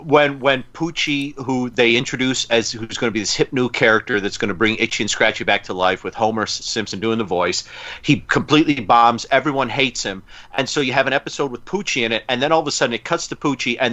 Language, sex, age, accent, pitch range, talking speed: English, male, 40-59, American, 120-150 Hz, 250 wpm